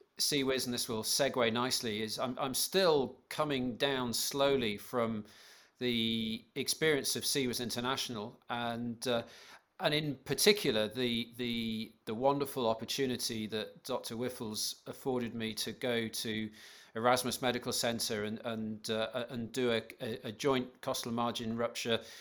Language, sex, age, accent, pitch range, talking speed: English, male, 40-59, British, 115-130 Hz, 140 wpm